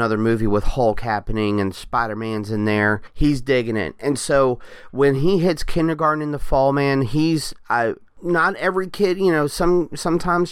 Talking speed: 185 wpm